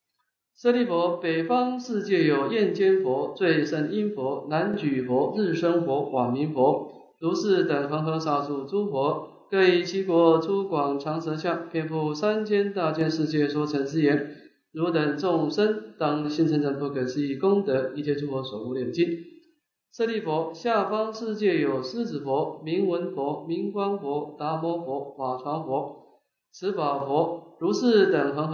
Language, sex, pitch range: English, male, 150-195 Hz